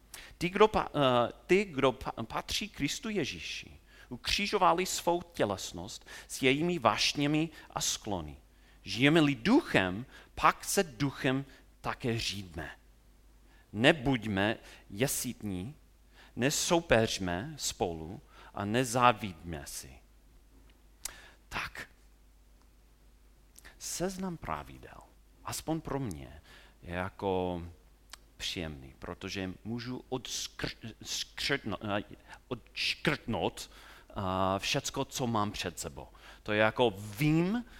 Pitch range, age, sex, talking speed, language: 85-135 Hz, 40-59, male, 80 wpm, Czech